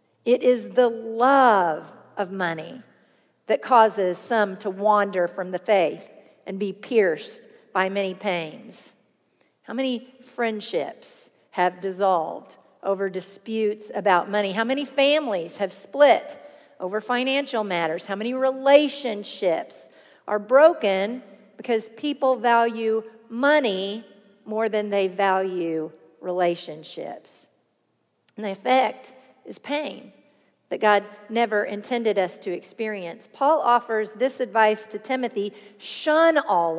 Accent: American